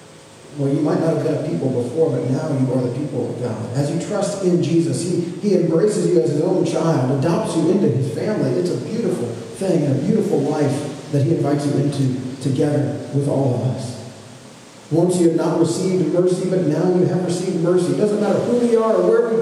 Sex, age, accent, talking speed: male, 40-59, American, 225 wpm